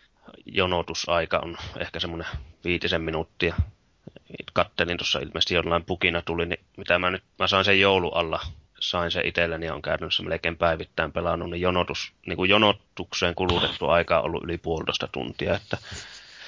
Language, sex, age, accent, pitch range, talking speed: Finnish, male, 30-49, native, 85-95 Hz, 150 wpm